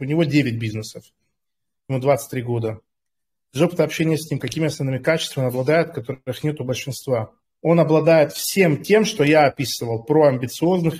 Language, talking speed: Russian, 165 wpm